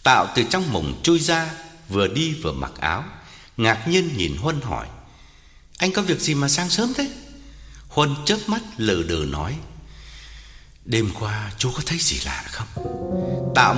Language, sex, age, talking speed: Vietnamese, male, 60-79, 170 wpm